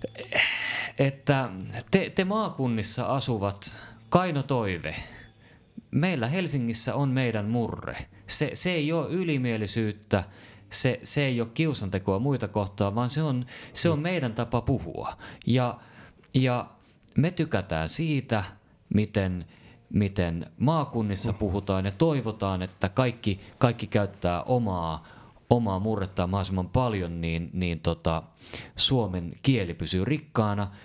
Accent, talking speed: native, 115 wpm